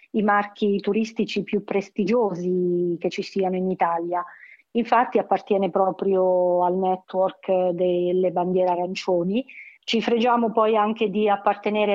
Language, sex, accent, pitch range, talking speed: Italian, female, native, 185-215 Hz, 120 wpm